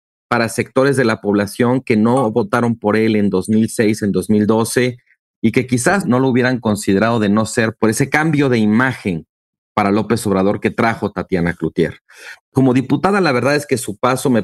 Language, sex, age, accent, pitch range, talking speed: Spanish, male, 40-59, Mexican, 105-125 Hz, 185 wpm